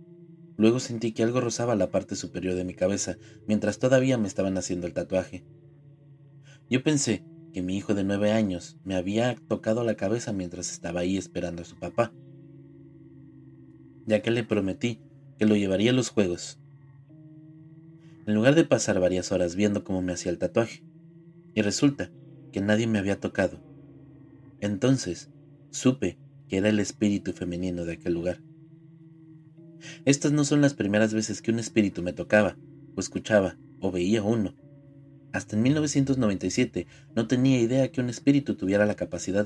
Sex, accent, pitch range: male, Mexican, 95-145 Hz